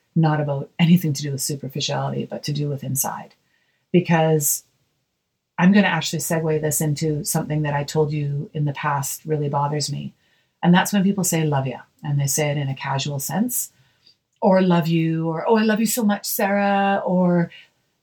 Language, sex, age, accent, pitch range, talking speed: English, female, 30-49, American, 155-195 Hz, 195 wpm